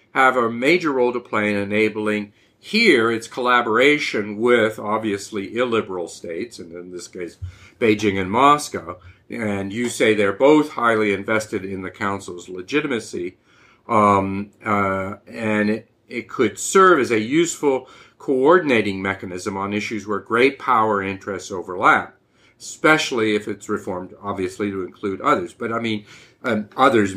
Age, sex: 50-69, male